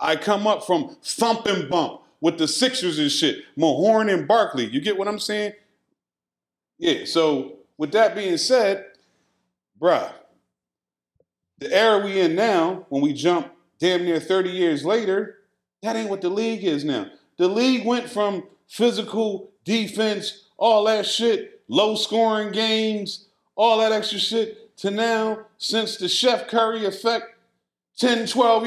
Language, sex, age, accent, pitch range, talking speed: English, male, 40-59, American, 200-235 Hz, 150 wpm